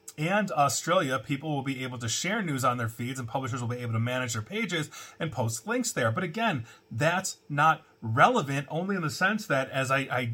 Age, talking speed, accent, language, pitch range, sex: 30-49, 220 wpm, American, English, 130-165 Hz, male